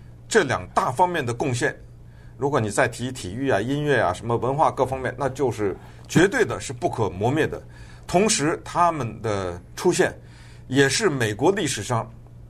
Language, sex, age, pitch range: Chinese, male, 50-69, 110-145 Hz